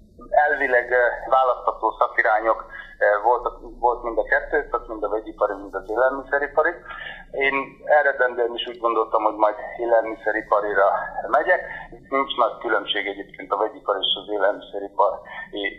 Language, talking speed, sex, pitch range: Hungarian, 125 wpm, male, 110-130 Hz